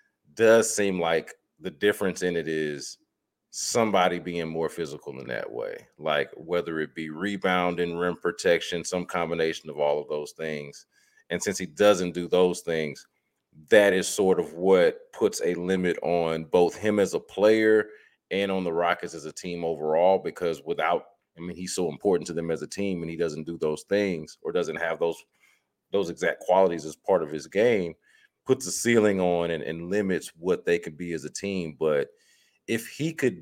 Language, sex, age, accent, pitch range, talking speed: English, male, 30-49, American, 85-110 Hz, 190 wpm